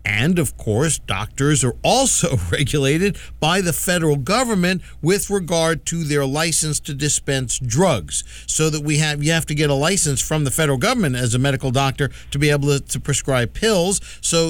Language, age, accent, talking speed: English, 50-69, American, 185 wpm